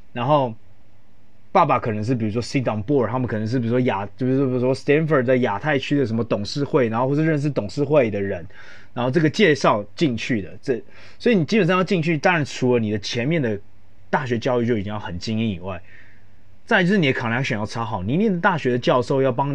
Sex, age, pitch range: male, 20-39, 105-155 Hz